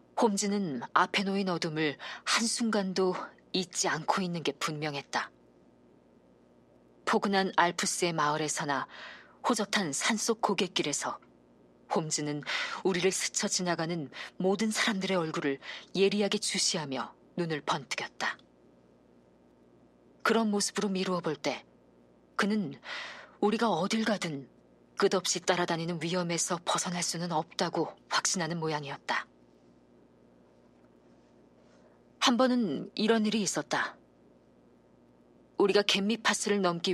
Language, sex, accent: Korean, female, native